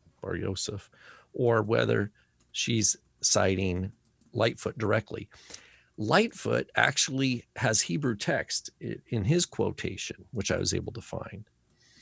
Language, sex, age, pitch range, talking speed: English, male, 50-69, 95-130 Hz, 110 wpm